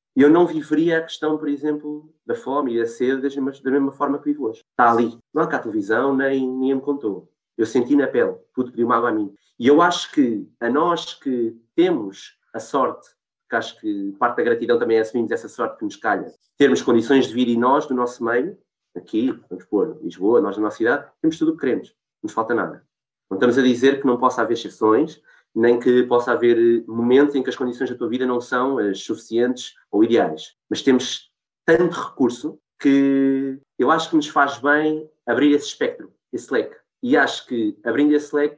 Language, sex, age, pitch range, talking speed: Portuguese, male, 20-39, 125-155 Hz, 215 wpm